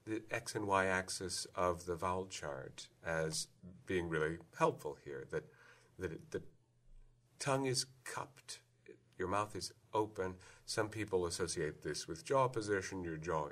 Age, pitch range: 50-69, 80-110 Hz